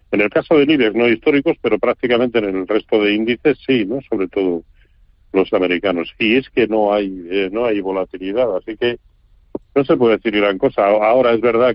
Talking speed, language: 205 wpm, Spanish